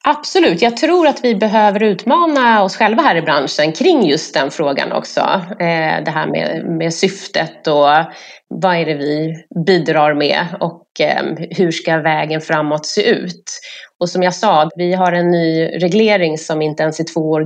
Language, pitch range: Swedish, 165-215 Hz